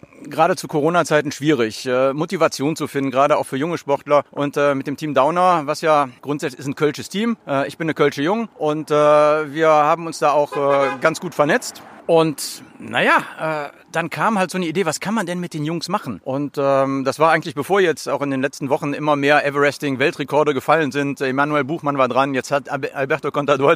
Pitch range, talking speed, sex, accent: 140-170 Hz, 215 wpm, male, German